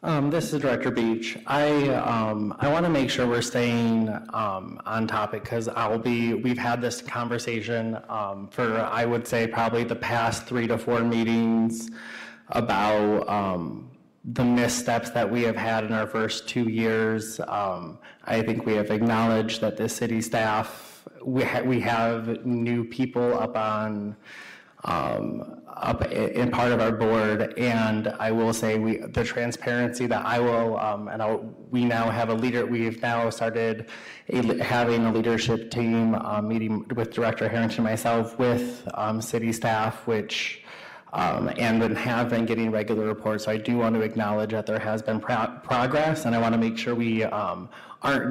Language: English